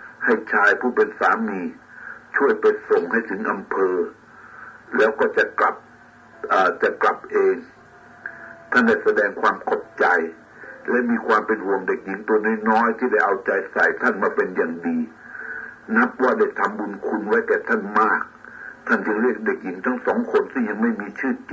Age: 60-79